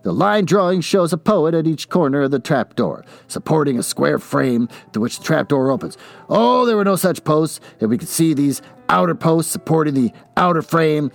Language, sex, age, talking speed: English, male, 50-69, 215 wpm